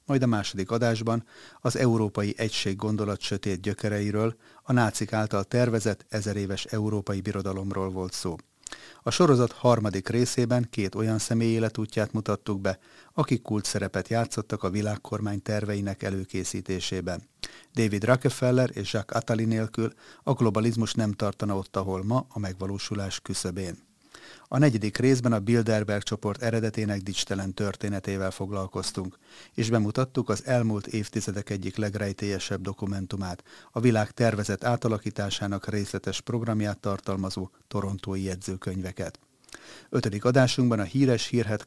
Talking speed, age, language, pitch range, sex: 120 wpm, 30-49, Hungarian, 100-115 Hz, male